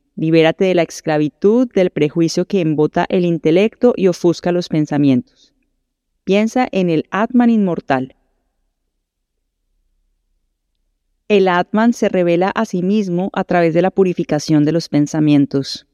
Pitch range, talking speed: 155-195 Hz, 130 wpm